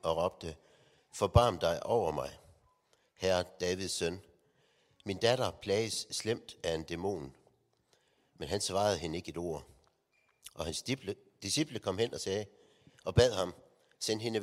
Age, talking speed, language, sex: 60-79, 145 wpm, Danish, male